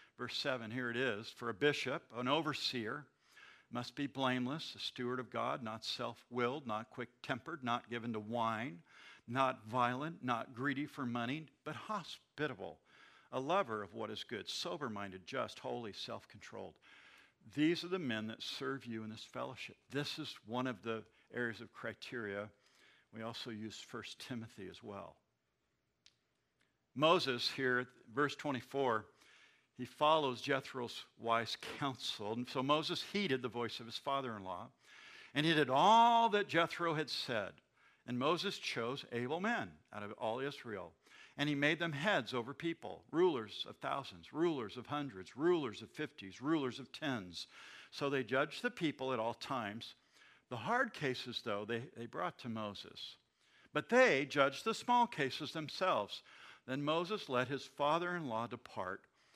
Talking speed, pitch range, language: 155 wpm, 120-150 Hz, English